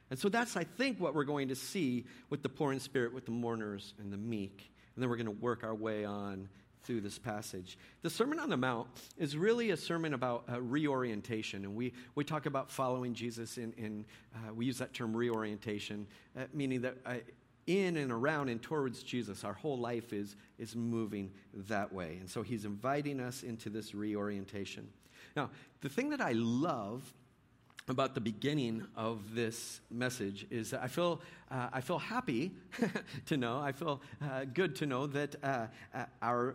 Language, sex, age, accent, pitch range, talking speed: English, male, 50-69, American, 110-135 Hz, 195 wpm